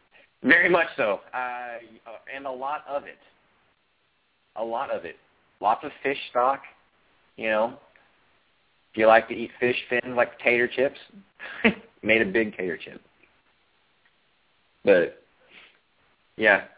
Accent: American